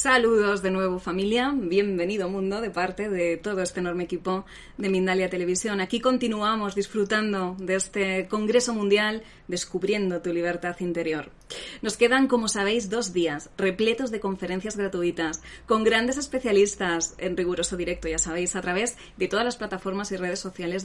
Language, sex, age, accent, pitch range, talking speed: Spanish, female, 20-39, Spanish, 185-245 Hz, 155 wpm